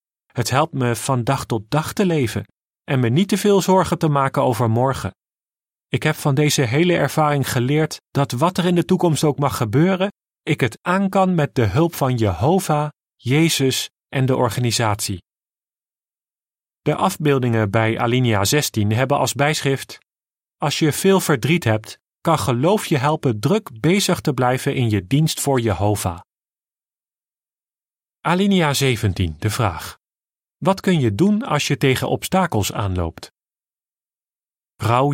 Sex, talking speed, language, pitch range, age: male, 150 wpm, Dutch, 120-155 Hz, 40-59